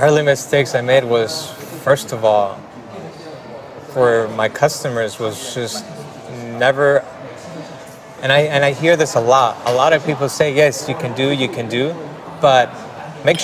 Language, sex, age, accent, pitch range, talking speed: English, male, 20-39, American, 115-140 Hz, 165 wpm